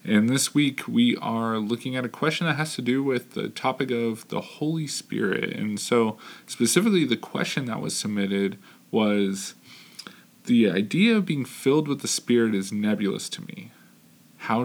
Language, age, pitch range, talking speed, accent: English, 20-39, 105-150 Hz, 170 wpm, American